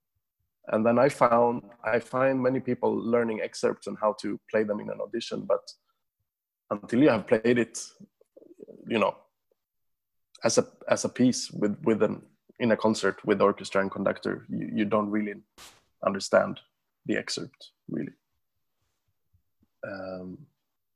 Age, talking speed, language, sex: 20-39, 145 wpm, English, male